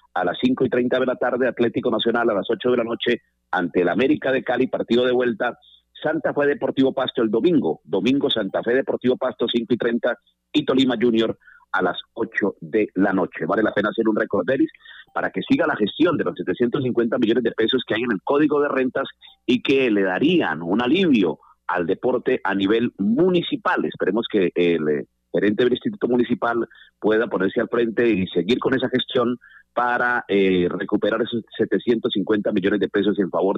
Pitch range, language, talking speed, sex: 105-135 Hz, Spanish, 195 wpm, male